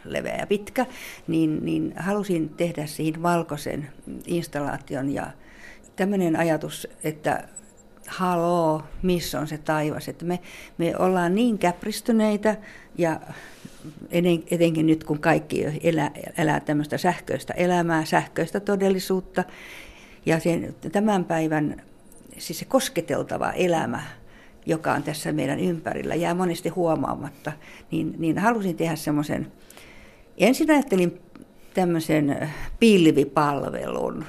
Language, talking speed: Finnish, 110 wpm